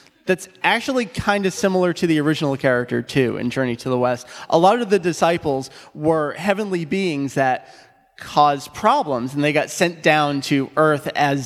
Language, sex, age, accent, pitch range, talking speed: English, male, 30-49, American, 130-170 Hz, 180 wpm